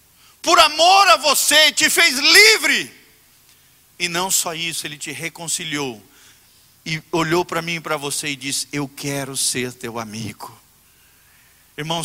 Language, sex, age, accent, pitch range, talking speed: Portuguese, male, 50-69, Brazilian, 165-245 Hz, 145 wpm